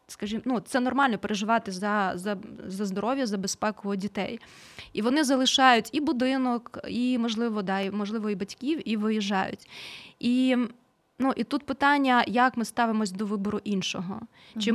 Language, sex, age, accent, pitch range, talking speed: Ukrainian, female, 20-39, native, 210-265 Hz, 155 wpm